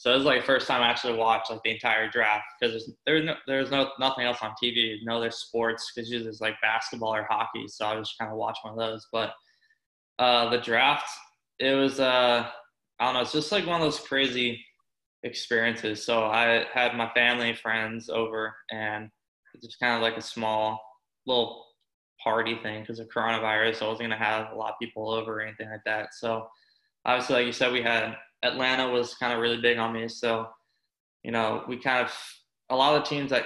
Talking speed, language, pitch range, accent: 225 wpm, English, 110-120 Hz, American